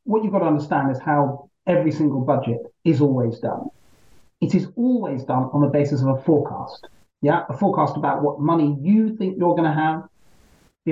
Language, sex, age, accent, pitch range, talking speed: English, male, 30-49, British, 135-180 Hz, 200 wpm